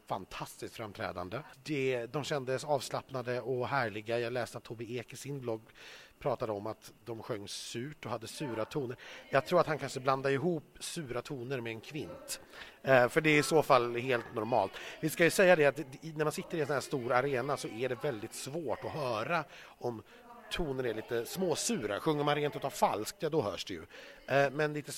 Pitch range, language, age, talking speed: 125-175 Hz, Swedish, 30-49, 195 wpm